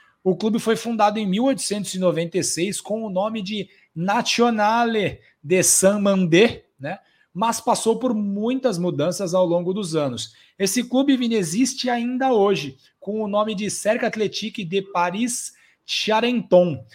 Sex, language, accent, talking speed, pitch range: male, Portuguese, Brazilian, 125 wpm, 165-225 Hz